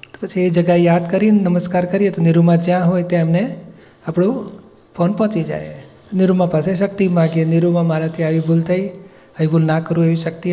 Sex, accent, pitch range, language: male, native, 160-185 Hz, Gujarati